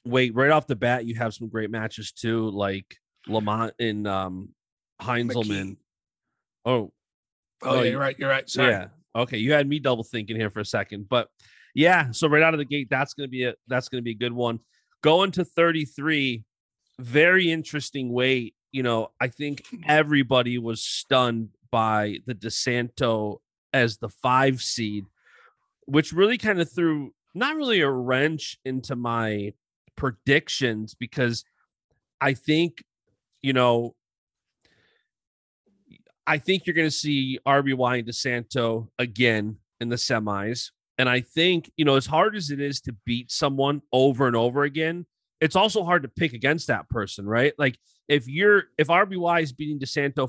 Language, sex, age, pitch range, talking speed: English, male, 30-49, 115-150 Hz, 165 wpm